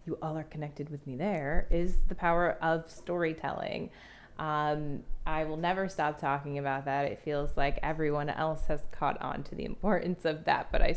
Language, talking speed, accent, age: English, 190 wpm, American, 20-39